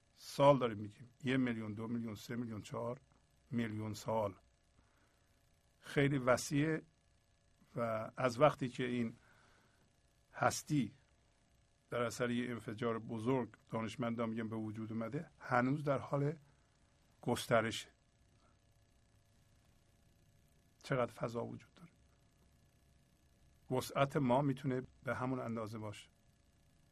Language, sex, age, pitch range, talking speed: Persian, male, 50-69, 115-150 Hz, 100 wpm